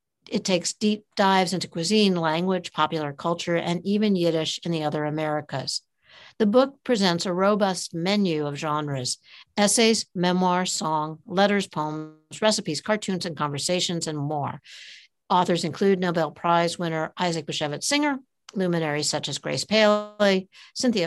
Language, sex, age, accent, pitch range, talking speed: English, female, 60-79, American, 170-220 Hz, 140 wpm